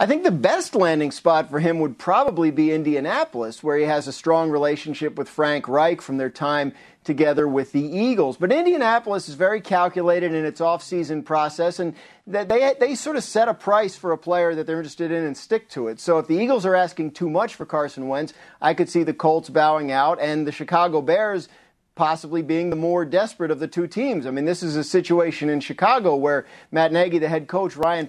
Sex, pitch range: male, 150-180 Hz